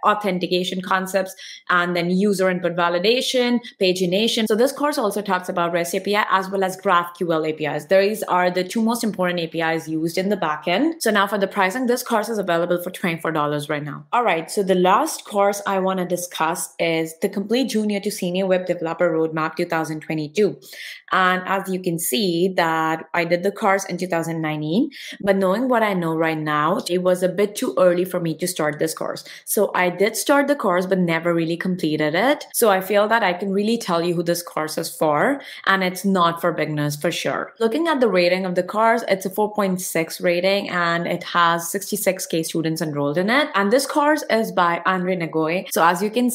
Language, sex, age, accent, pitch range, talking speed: English, female, 20-39, Indian, 170-200 Hz, 205 wpm